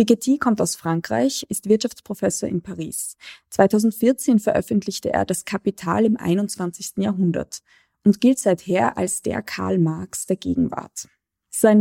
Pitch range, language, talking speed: 180-230 Hz, German, 130 wpm